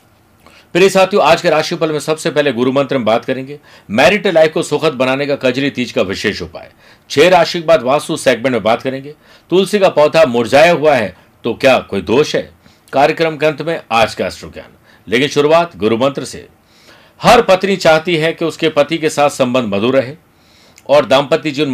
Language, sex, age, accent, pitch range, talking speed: Hindi, male, 50-69, native, 125-165 Hz, 185 wpm